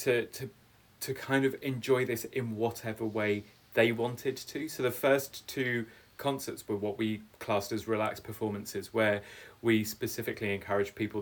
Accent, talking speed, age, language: British, 155 wpm, 20-39, English